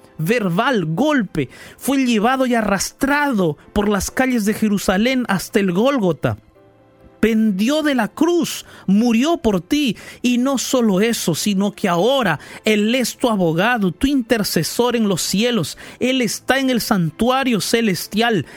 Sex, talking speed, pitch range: male, 140 wpm, 165-230 Hz